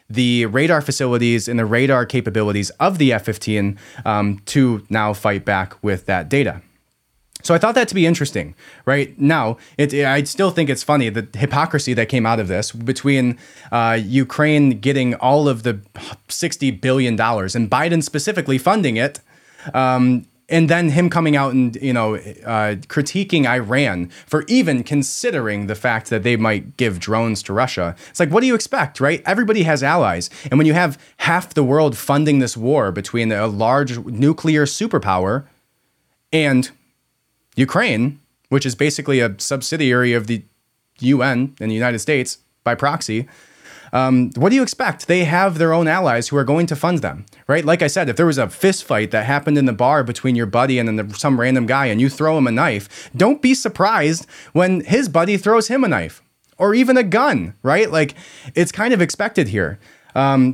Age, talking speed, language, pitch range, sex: 20-39, 180 wpm, English, 120-160 Hz, male